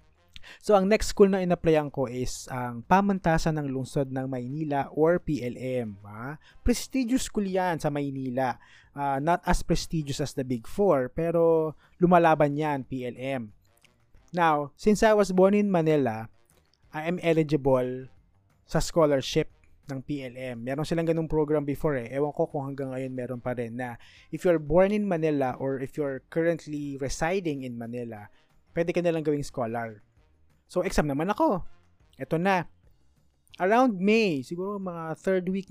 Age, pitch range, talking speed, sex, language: 20-39, 125-180 Hz, 155 wpm, male, Filipino